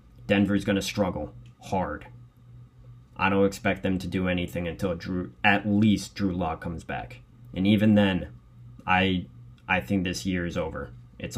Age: 20-39